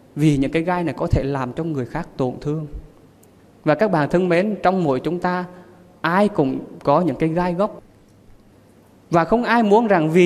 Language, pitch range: Vietnamese, 140-190 Hz